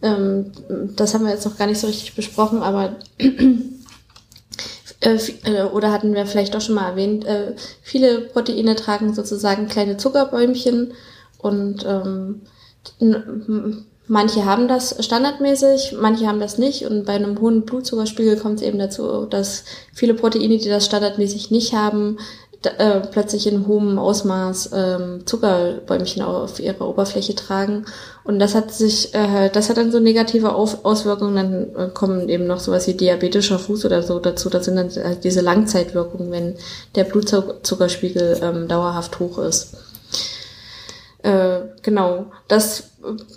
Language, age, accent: German, 20-39, German